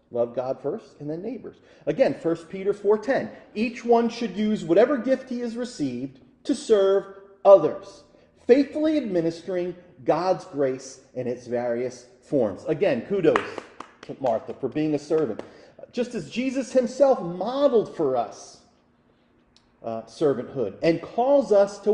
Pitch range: 155-260 Hz